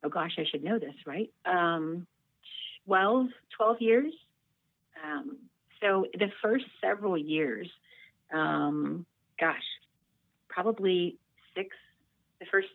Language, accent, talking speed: English, American, 110 wpm